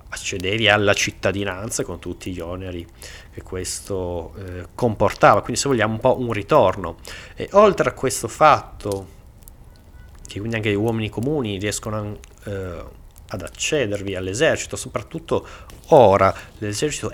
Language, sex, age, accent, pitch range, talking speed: Italian, male, 30-49, native, 95-110 Hz, 130 wpm